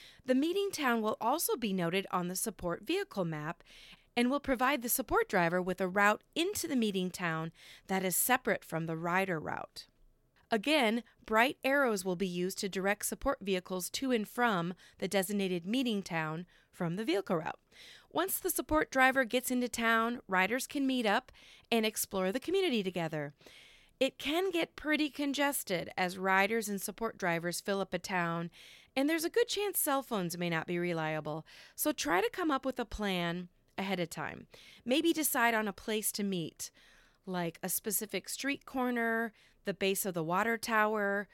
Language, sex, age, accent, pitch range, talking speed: English, female, 30-49, American, 185-260 Hz, 180 wpm